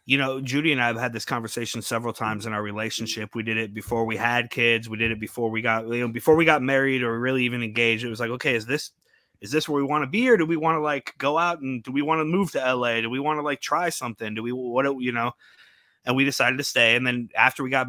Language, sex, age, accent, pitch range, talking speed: English, male, 30-49, American, 115-135 Hz, 300 wpm